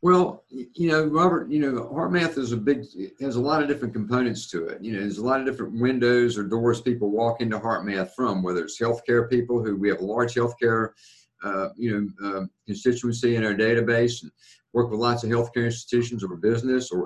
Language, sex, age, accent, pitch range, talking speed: English, male, 50-69, American, 105-130 Hz, 220 wpm